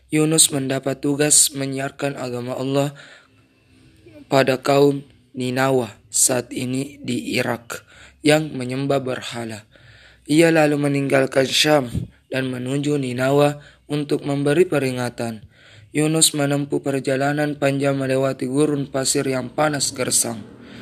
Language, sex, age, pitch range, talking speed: Indonesian, male, 20-39, 125-145 Hz, 105 wpm